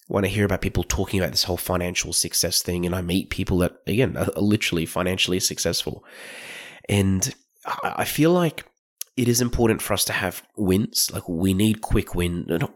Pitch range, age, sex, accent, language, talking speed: 90-110 Hz, 20-39, male, Australian, English, 190 wpm